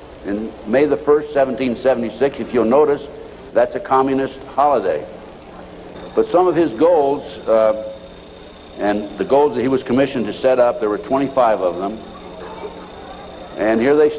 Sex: male